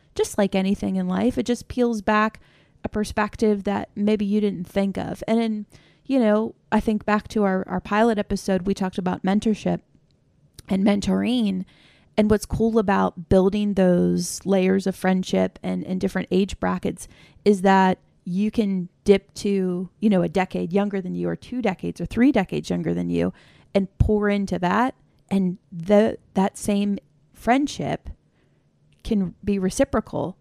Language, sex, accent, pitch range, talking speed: English, female, American, 185-215 Hz, 165 wpm